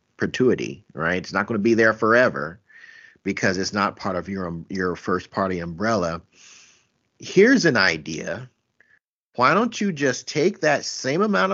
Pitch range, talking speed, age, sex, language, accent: 110-165 Hz, 150 wpm, 50-69, male, English, American